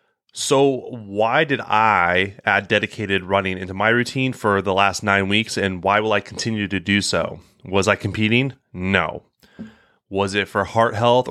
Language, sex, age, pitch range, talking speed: English, male, 30-49, 95-120 Hz, 170 wpm